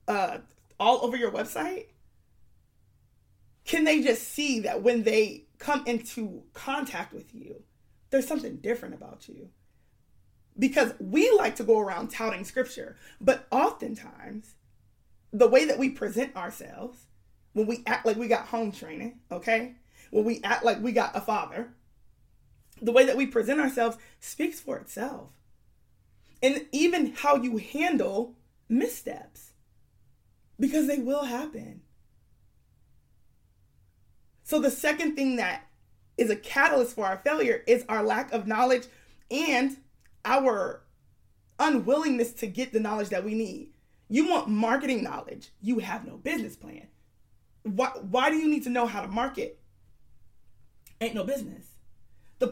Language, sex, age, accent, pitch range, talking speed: English, female, 20-39, American, 230-280 Hz, 140 wpm